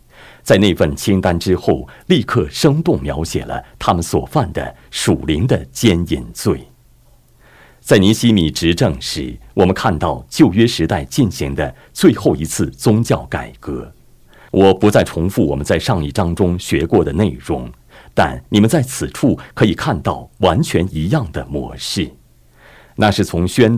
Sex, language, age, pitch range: male, Chinese, 50-69, 75-120 Hz